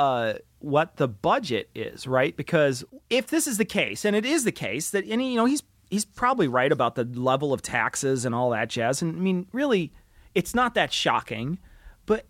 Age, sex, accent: 30-49, male, American